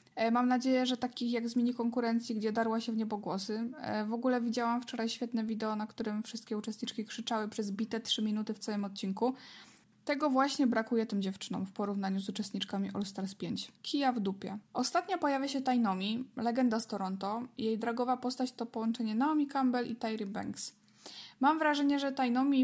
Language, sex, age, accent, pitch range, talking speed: Polish, female, 20-39, native, 215-250 Hz, 180 wpm